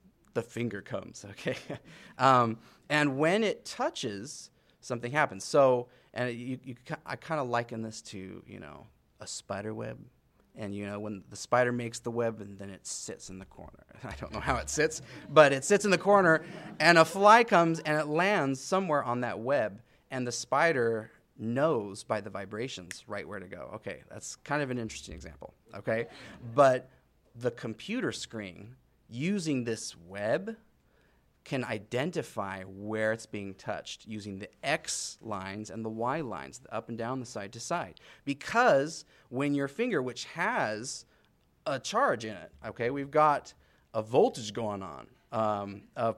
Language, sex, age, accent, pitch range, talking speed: English, male, 30-49, American, 110-150 Hz, 170 wpm